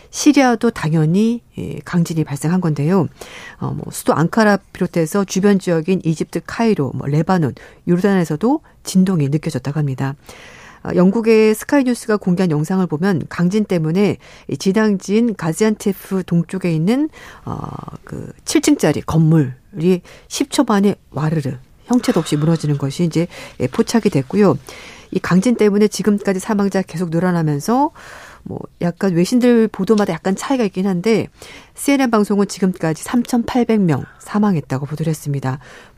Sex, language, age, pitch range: female, Korean, 50-69, 155-215 Hz